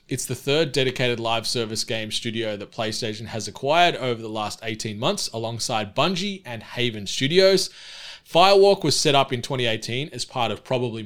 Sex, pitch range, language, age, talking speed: male, 110-140 Hz, English, 20-39, 175 wpm